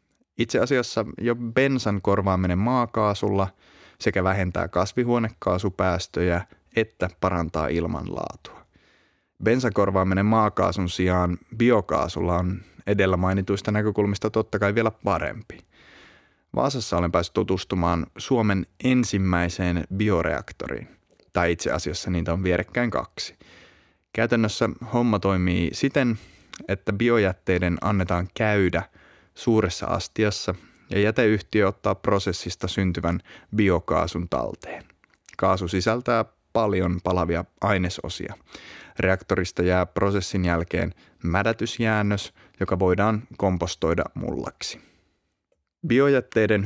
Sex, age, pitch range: male, 30-49, 90-105 Hz